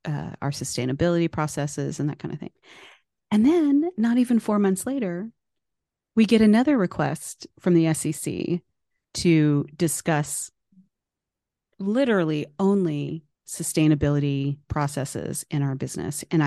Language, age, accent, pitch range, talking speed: English, 30-49, American, 145-175 Hz, 120 wpm